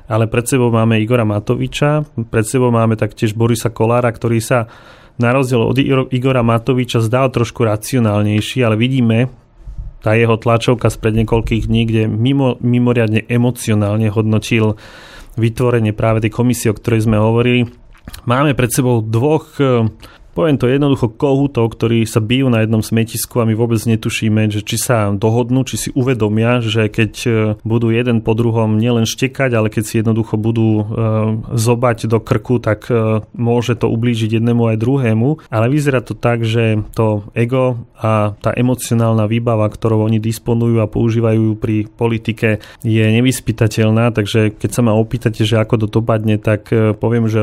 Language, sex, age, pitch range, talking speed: Slovak, male, 30-49, 110-120 Hz, 155 wpm